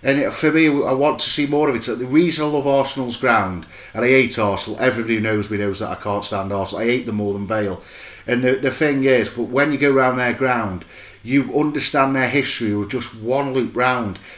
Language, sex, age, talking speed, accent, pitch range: English, male, 30-49, 240 wpm, British, 105-140 Hz